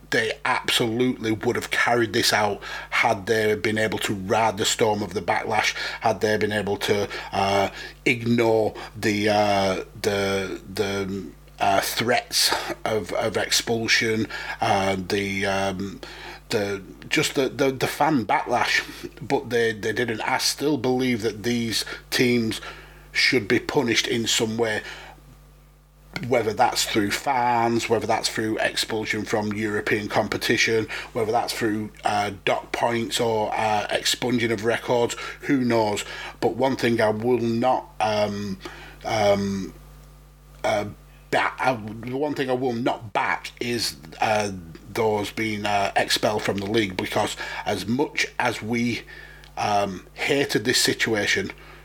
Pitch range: 100-115 Hz